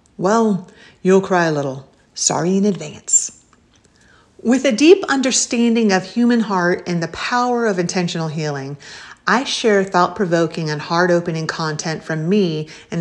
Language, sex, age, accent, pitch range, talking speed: English, female, 40-59, American, 170-230 Hz, 140 wpm